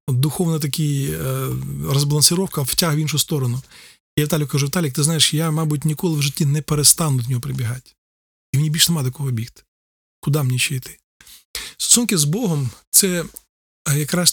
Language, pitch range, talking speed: Ukrainian, 130-155 Hz, 180 wpm